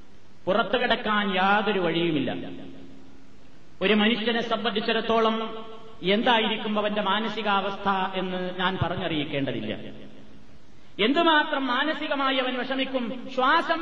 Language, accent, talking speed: Malayalam, native, 80 wpm